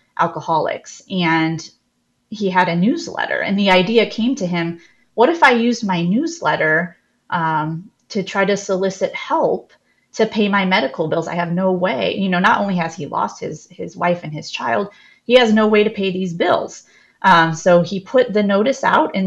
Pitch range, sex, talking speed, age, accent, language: 170-200 Hz, female, 195 wpm, 30-49, American, English